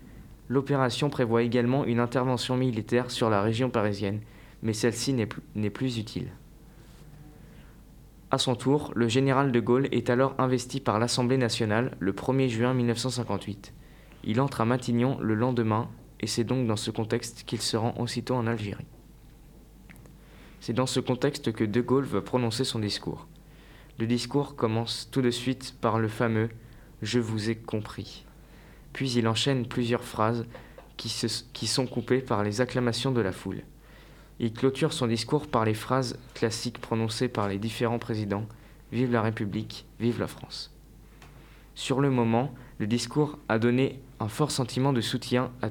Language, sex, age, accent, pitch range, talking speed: French, male, 20-39, French, 115-130 Hz, 165 wpm